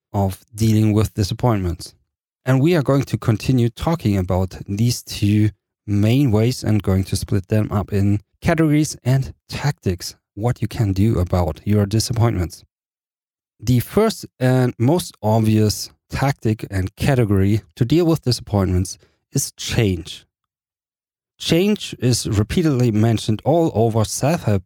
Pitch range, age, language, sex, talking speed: 100-130 Hz, 40-59, English, male, 130 wpm